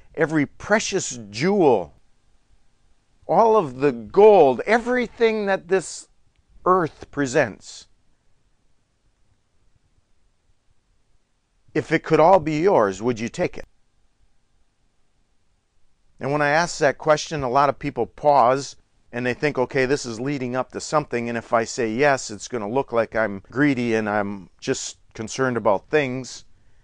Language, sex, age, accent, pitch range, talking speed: English, male, 40-59, American, 110-150 Hz, 135 wpm